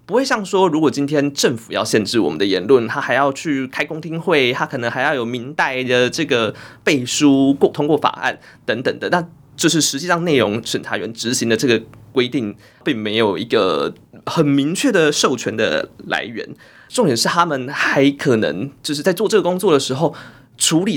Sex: male